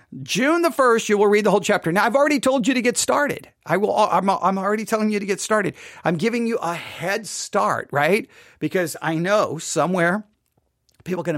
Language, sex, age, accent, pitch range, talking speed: English, male, 50-69, American, 160-215 Hz, 215 wpm